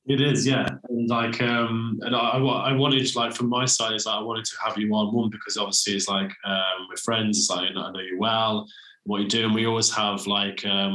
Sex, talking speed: male, 245 wpm